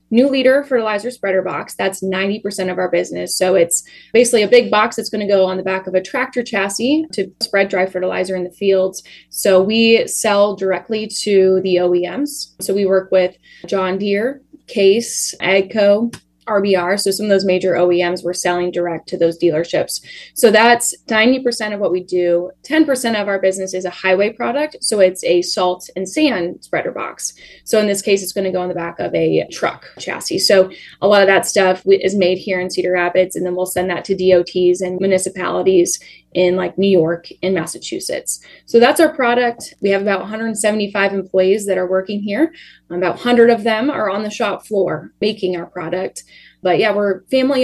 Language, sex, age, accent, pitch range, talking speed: English, female, 10-29, American, 185-215 Hz, 195 wpm